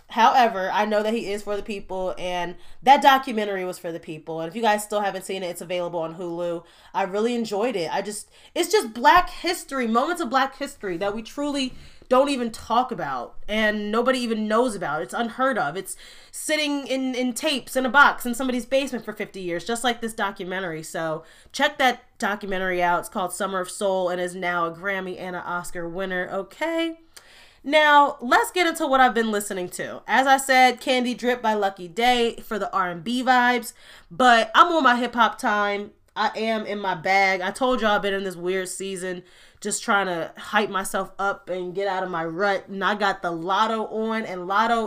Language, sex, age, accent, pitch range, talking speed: English, female, 20-39, American, 185-260 Hz, 210 wpm